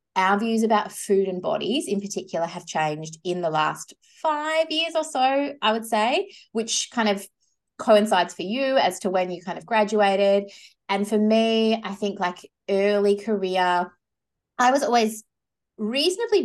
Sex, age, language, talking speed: female, 20-39, English, 165 wpm